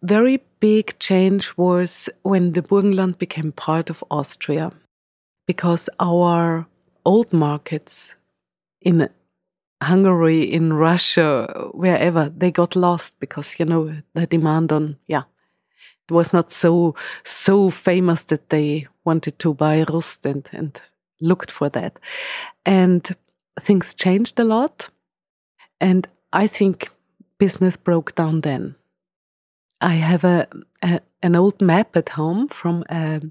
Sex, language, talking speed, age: female, English, 125 wpm, 30-49